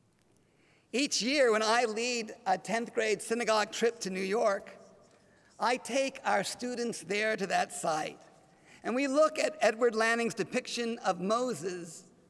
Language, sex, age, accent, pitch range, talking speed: English, male, 50-69, American, 185-245 Hz, 145 wpm